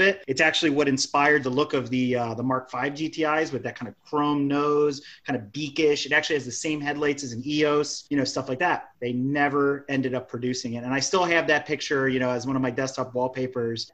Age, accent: 30-49, American